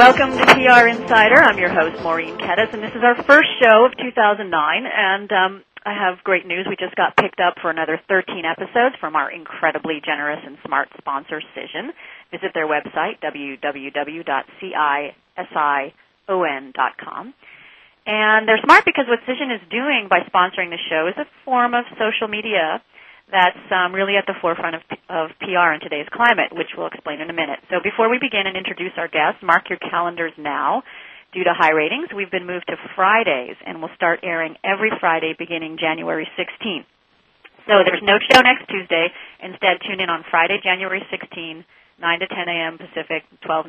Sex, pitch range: female, 165-215 Hz